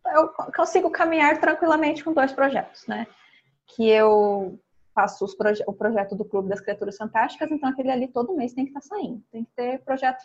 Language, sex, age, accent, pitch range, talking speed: Portuguese, female, 20-39, Brazilian, 225-275 Hz, 200 wpm